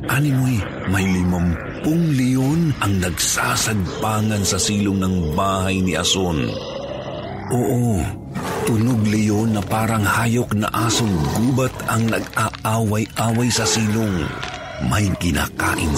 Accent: native